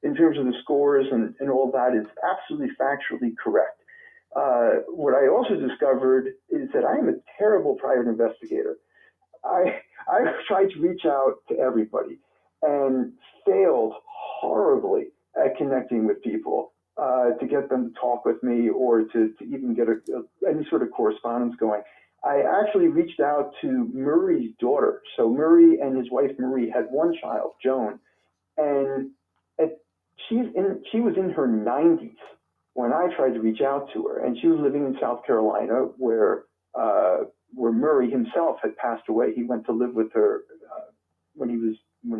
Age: 50-69